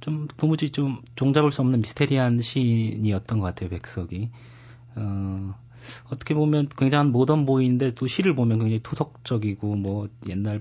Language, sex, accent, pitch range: Korean, male, native, 105-125 Hz